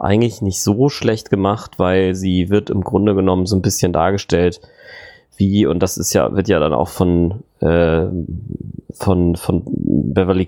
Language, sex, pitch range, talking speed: German, male, 95-105 Hz, 165 wpm